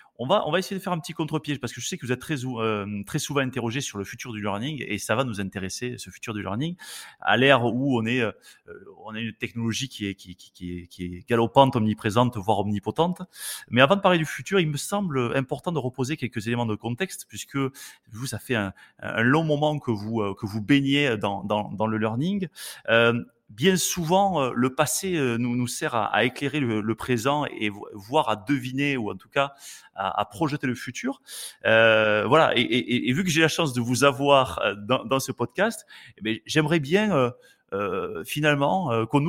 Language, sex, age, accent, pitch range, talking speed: French, male, 30-49, French, 115-150 Hz, 215 wpm